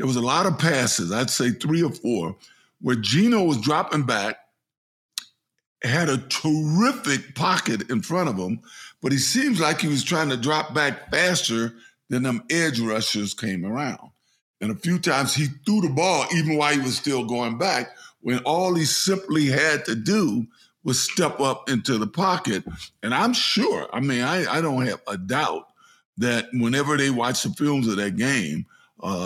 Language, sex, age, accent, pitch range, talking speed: English, male, 50-69, American, 120-160 Hz, 185 wpm